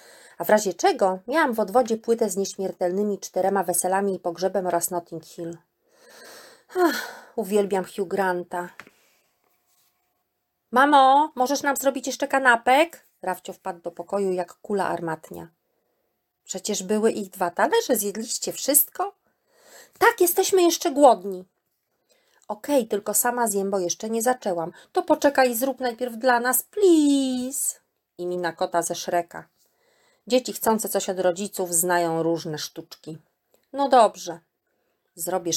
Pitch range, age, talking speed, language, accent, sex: 180-265 Hz, 30-49, 130 wpm, Polish, native, female